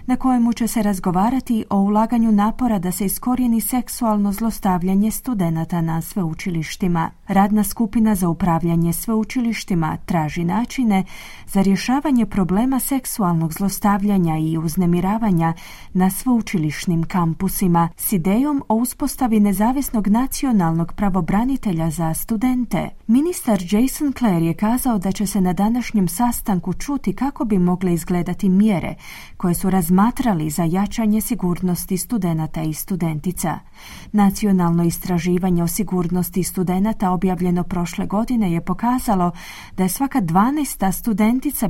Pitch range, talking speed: 175-230 Hz, 120 wpm